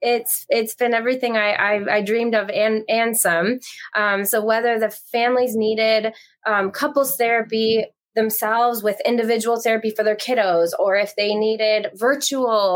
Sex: female